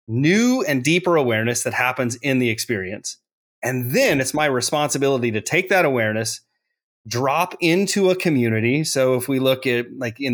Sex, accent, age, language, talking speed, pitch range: male, American, 30-49, English, 170 wpm, 120-170 Hz